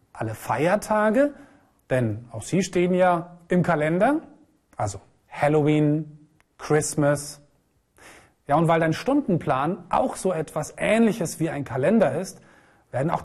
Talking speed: 120 wpm